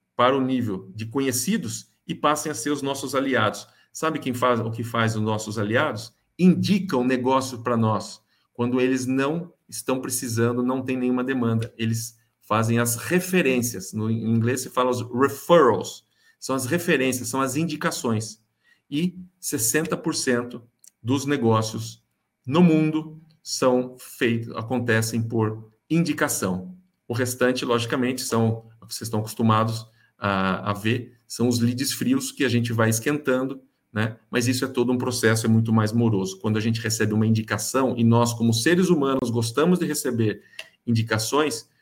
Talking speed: 155 wpm